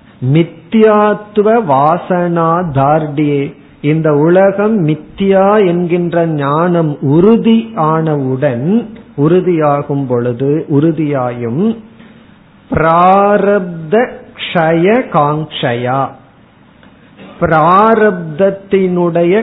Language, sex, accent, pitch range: Tamil, male, native, 150-200 Hz